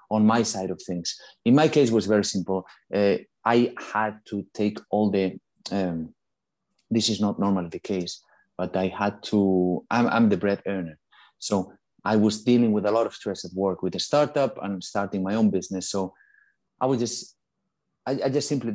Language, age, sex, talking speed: English, 30-49, male, 200 wpm